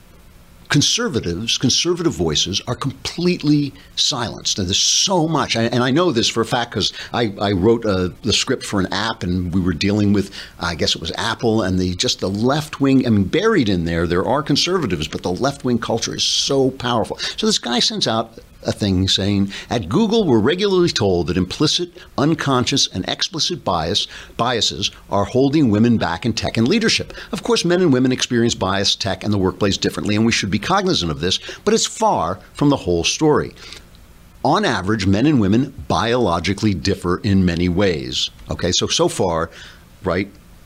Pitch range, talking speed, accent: 90-135 Hz, 185 wpm, American